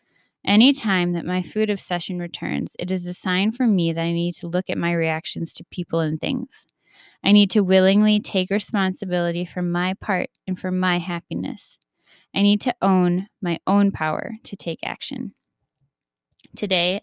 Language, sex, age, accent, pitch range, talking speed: English, female, 10-29, American, 170-200 Hz, 170 wpm